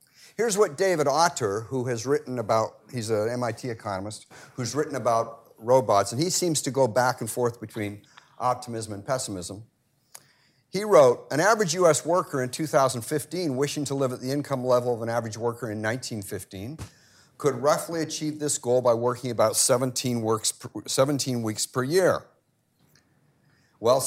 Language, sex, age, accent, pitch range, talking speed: English, male, 50-69, American, 110-145 Hz, 160 wpm